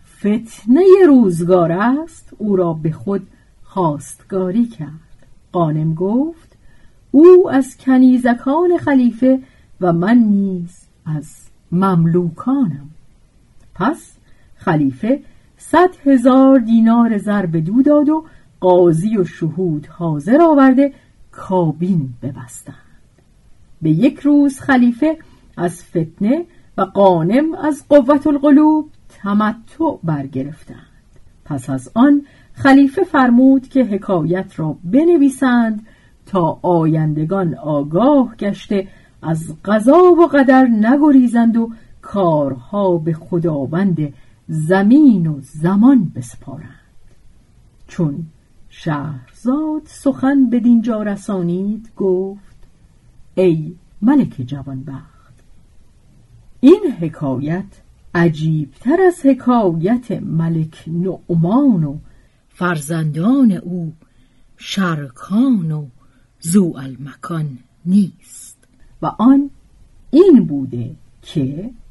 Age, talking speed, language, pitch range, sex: 50-69, 90 wpm, Persian, 155-260 Hz, female